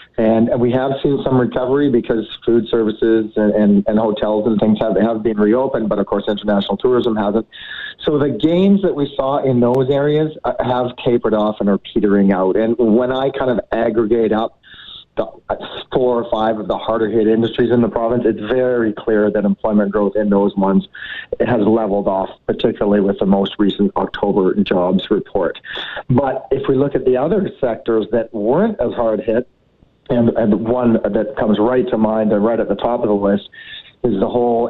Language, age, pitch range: English, 40-59, 105-125 Hz